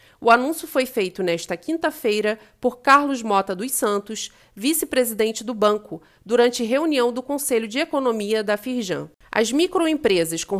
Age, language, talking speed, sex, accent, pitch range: 40-59, Portuguese, 140 wpm, female, Brazilian, 205-275 Hz